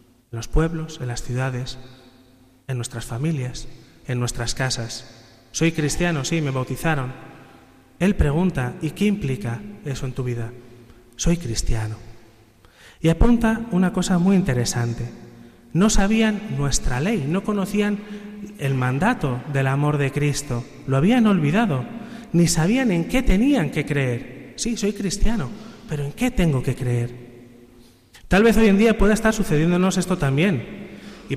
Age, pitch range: 30-49, 120-175 Hz